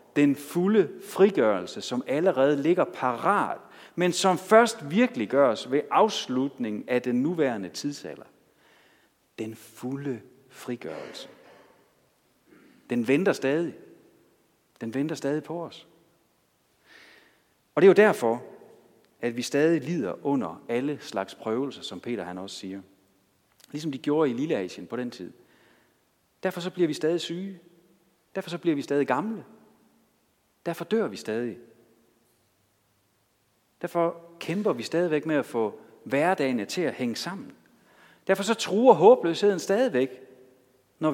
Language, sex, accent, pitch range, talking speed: Danish, male, native, 120-180 Hz, 130 wpm